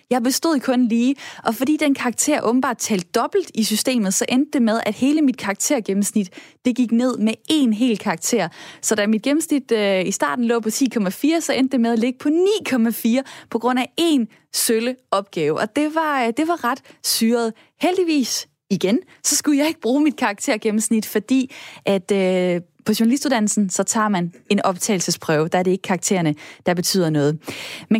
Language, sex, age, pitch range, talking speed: Danish, female, 20-39, 195-260 Hz, 185 wpm